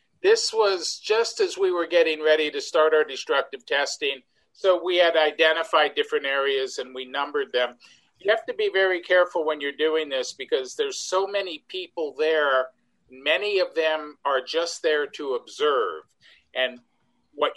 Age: 50-69